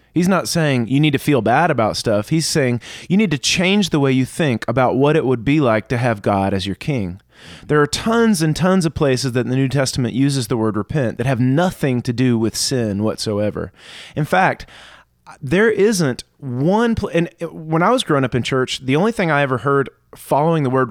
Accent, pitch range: American, 120-165 Hz